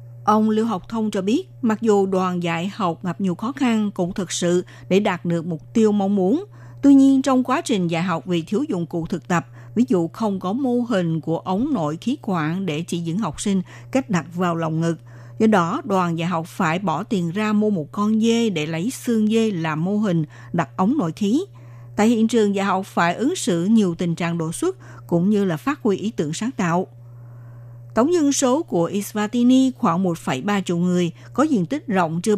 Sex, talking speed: female, 220 wpm